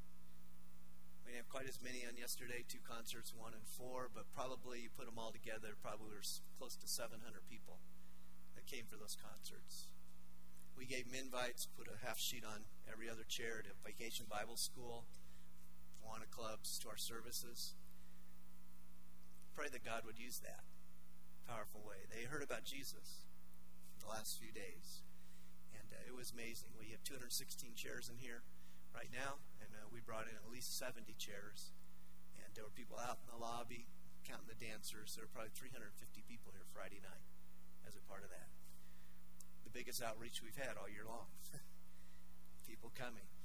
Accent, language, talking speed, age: American, English, 165 wpm, 40-59